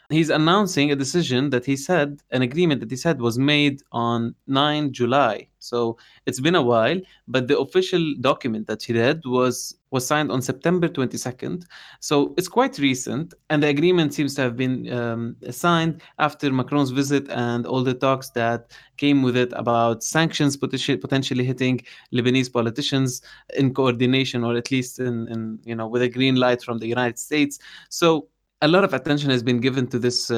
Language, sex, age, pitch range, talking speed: English, male, 20-39, 120-140 Hz, 180 wpm